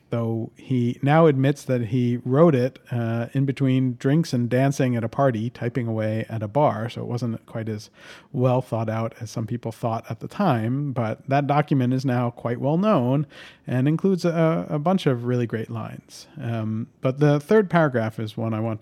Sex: male